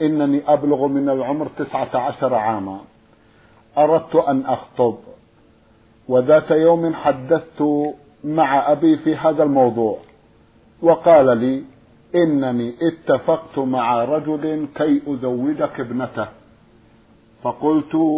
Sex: male